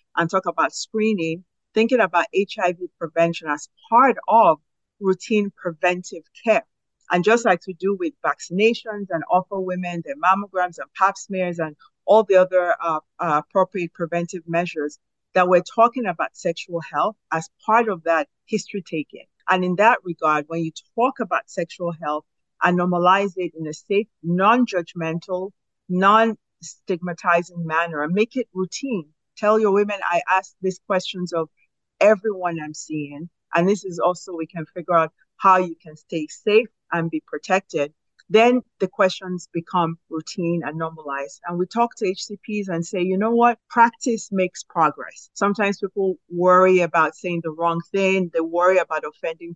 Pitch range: 165-205 Hz